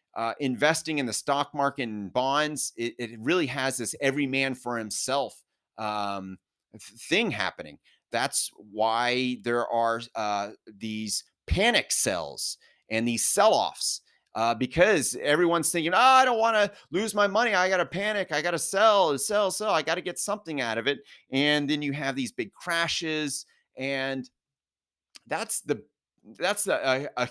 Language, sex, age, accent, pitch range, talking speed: English, male, 30-49, American, 115-150 Hz, 155 wpm